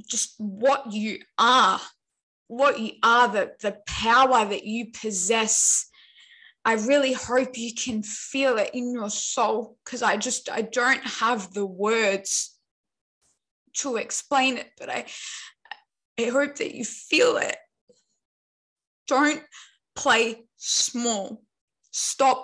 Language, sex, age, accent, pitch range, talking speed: English, female, 10-29, Australian, 225-275 Hz, 125 wpm